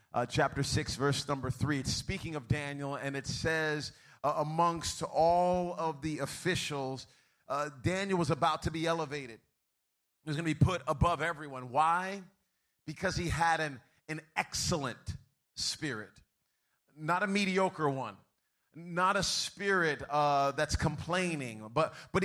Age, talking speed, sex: 30-49, 145 wpm, male